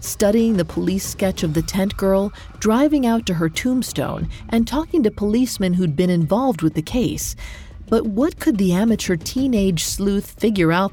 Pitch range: 160-225 Hz